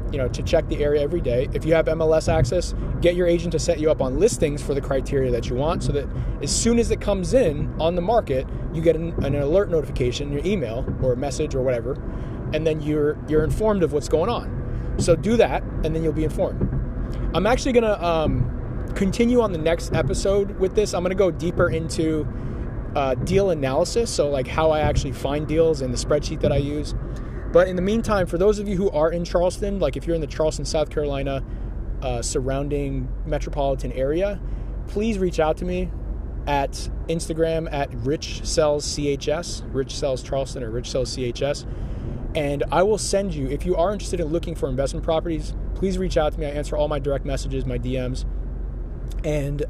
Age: 20-39